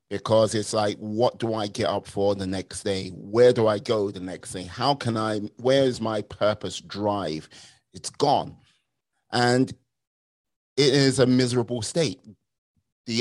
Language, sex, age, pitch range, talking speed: English, male, 30-49, 105-130 Hz, 165 wpm